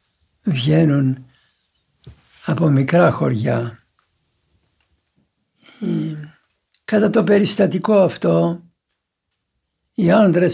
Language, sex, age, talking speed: Greek, male, 60-79, 55 wpm